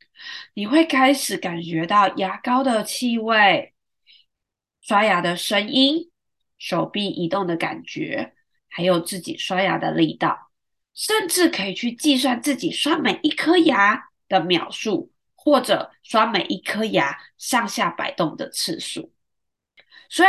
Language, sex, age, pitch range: Chinese, female, 20-39, 180-295 Hz